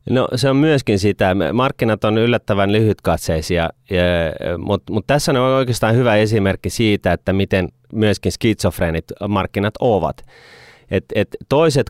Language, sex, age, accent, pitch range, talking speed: Finnish, male, 30-49, native, 95-125 Hz, 135 wpm